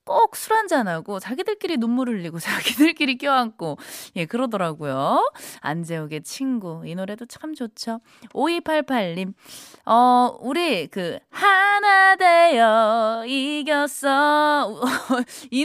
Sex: female